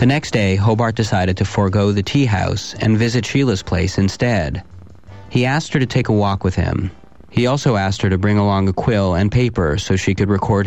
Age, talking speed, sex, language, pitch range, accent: 40-59, 220 wpm, male, English, 95-115 Hz, American